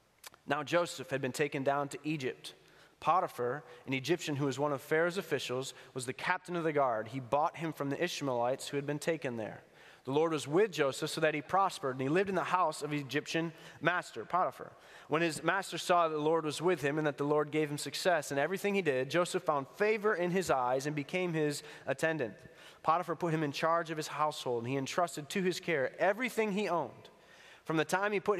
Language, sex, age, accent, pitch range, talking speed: English, male, 20-39, American, 135-170 Hz, 225 wpm